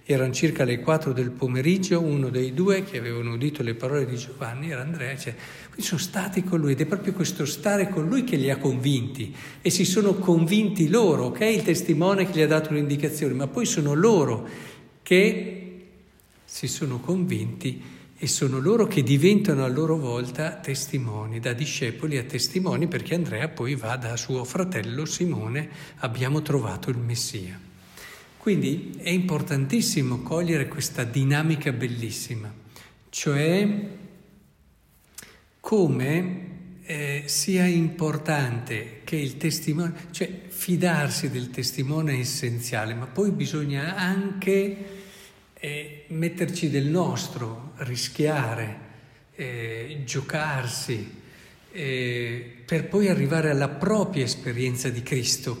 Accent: native